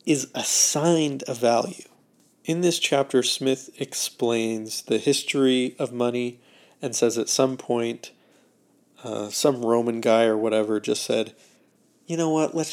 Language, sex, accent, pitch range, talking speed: English, male, American, 115-140 Hz, 140 wpm